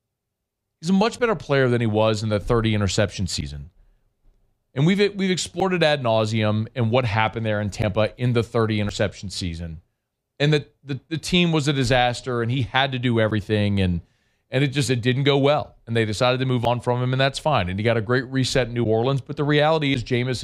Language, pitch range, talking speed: English, 110-145 Hz, 225 wpm